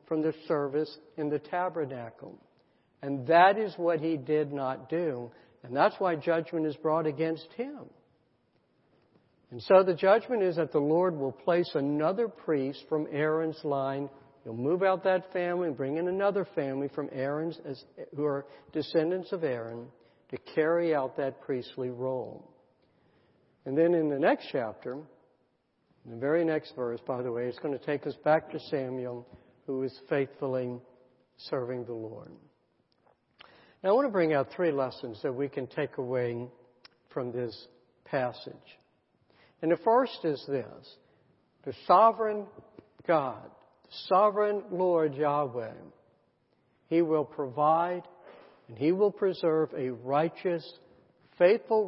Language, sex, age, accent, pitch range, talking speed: English, male, 60-79, American, 130-170 Hz, 145 wpm